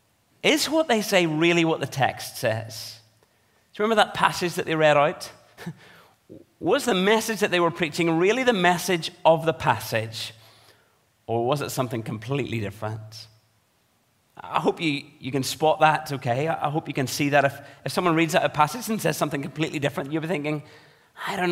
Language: English